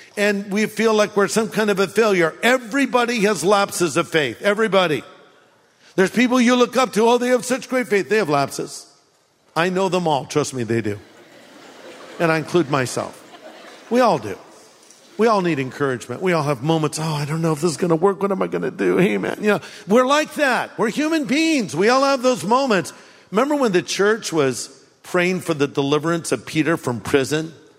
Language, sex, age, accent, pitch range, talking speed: English, male, 50-69, American, 155-225 Hz, 210 wpm